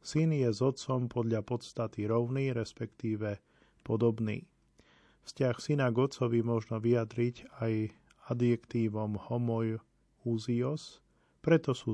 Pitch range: 105-120 Hz